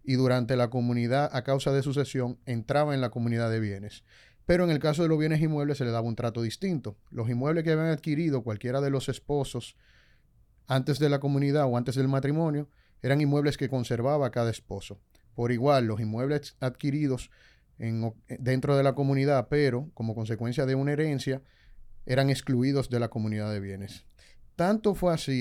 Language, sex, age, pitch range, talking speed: Spanish, male, 30-49, 115-145 Hz, 180 wpm